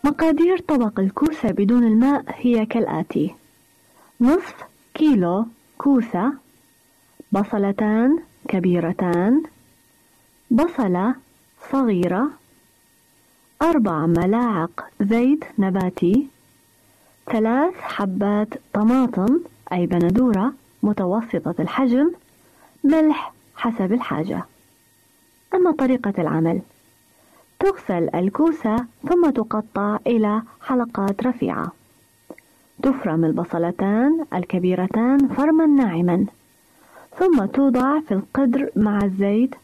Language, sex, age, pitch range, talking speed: Arabic, female, 30-49, 200-275 Hz, 75 wpm